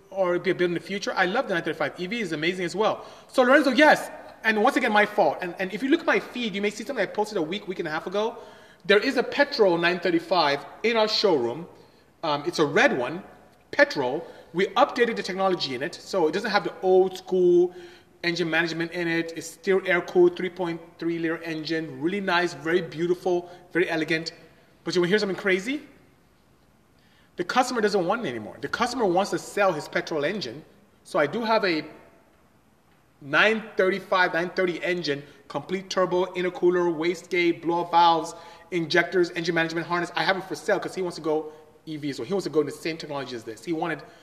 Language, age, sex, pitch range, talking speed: English, 30-49, male, 165-205 Hz, 205 wpm